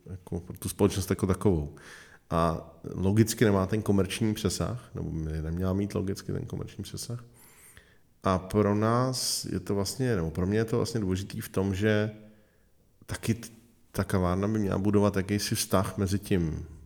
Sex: male